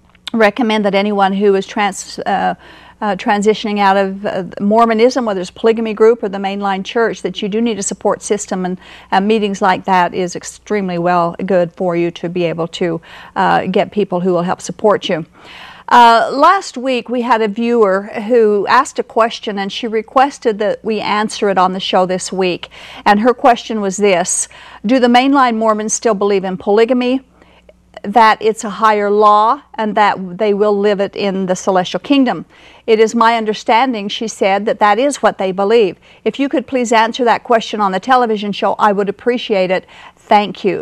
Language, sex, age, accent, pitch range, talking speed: English, female, 50-69, American, 200-245 Hz, 190 wpm